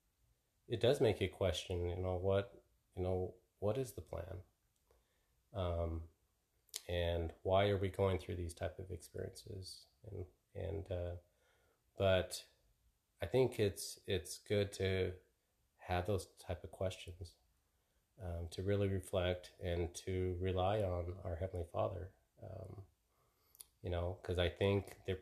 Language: English